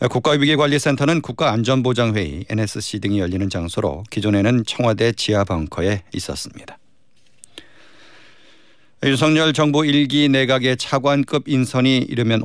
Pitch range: 105-130 Hz